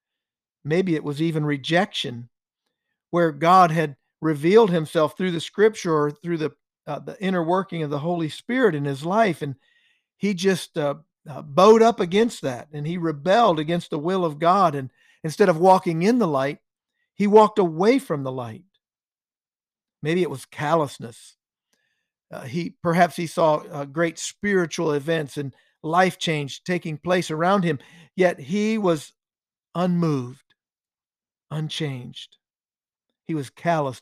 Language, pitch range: English, 150-185 Hz